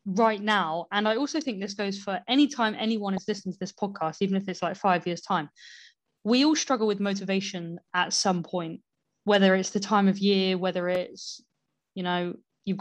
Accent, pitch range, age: British, 180-205 Hz, 20-39